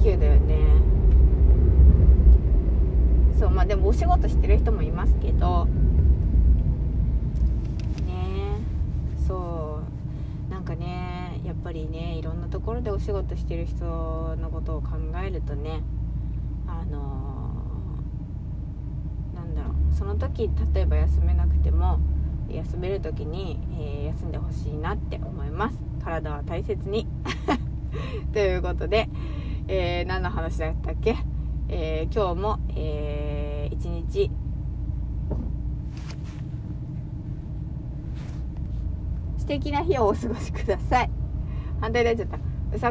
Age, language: 20-39, Japanese